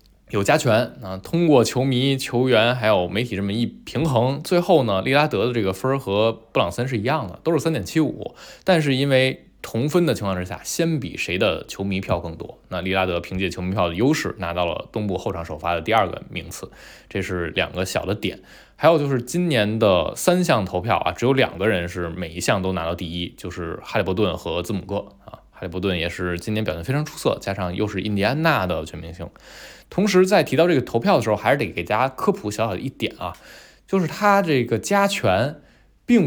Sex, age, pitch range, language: male, 20-39, 95-145 Hz, Chinese